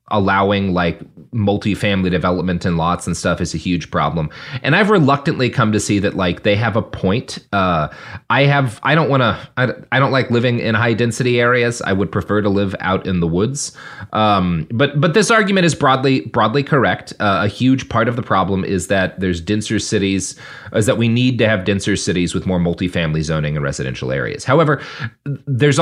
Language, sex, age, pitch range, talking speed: English, male, 30-49, 90-130 Hz, 200 wpm